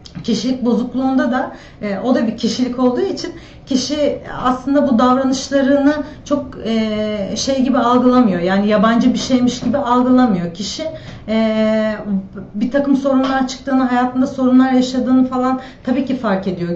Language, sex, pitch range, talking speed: Turkish, female, 220-260 Hz, 130 wpm